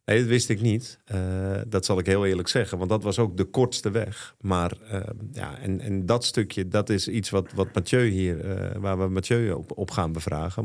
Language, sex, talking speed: Dutch, male, 225 wpm